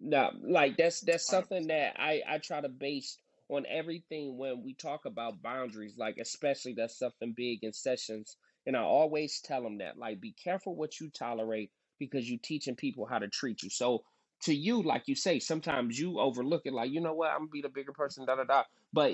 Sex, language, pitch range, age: male, English, 135-185 Hz, 30-49